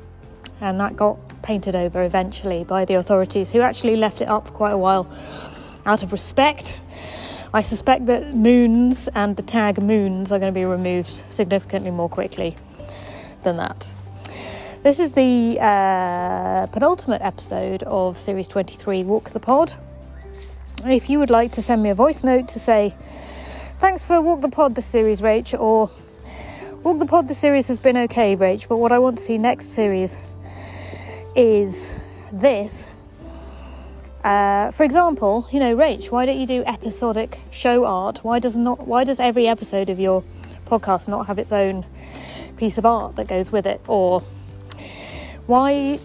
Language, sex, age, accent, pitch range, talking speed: English, female, 30-49, British, 185-245 Hz, 165 wpm